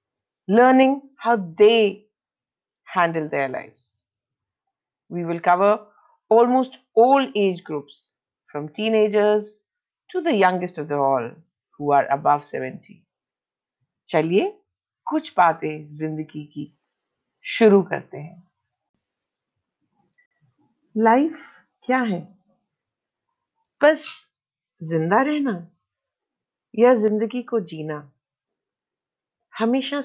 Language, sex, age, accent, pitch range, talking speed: Hindi, female, 50-69, native, 170-245 Hz, 90 wpm